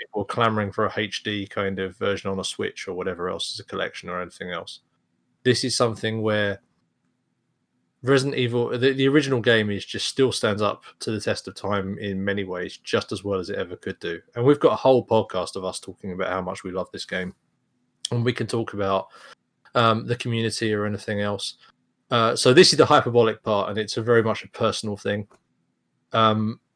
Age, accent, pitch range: 20-39, British, 100-120 Hz